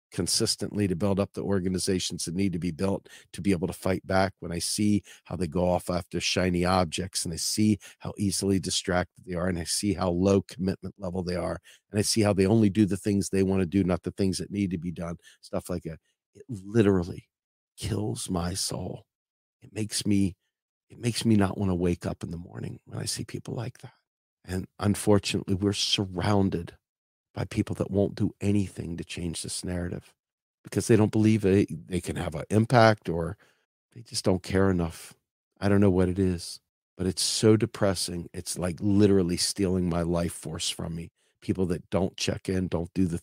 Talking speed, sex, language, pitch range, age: 210 wpm, male, English, 85-100 Hz, 50-69